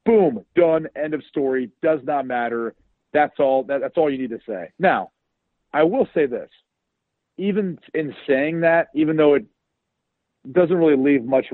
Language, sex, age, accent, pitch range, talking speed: English, male, 40-59, American, 125-160 Hz, 170 wpm